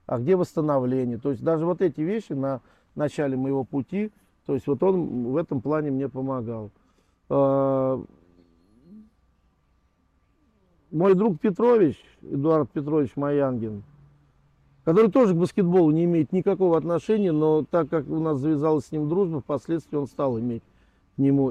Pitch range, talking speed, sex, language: 125-160 Hz, 140 wpm, male, Russian